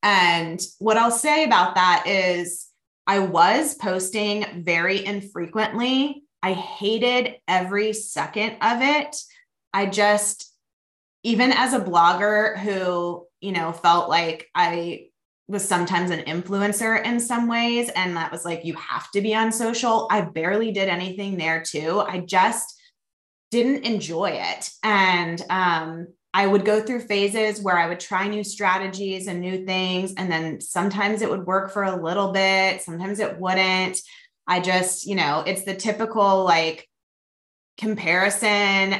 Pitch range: 180-220 Hz